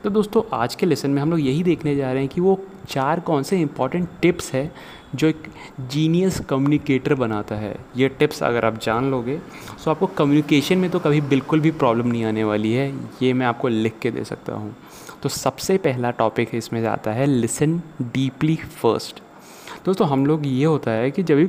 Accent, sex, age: native, male, 30-49